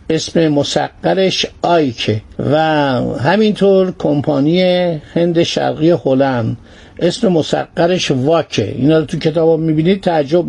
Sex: male